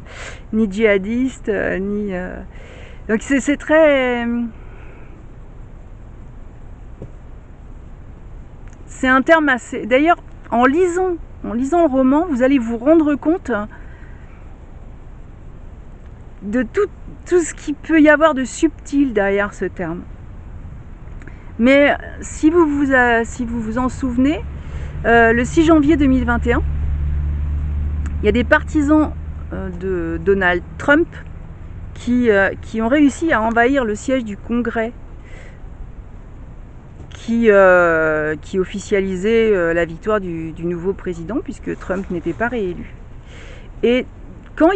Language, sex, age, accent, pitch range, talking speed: French, female, 50-69, French, 200-285 Hz, 115 wpm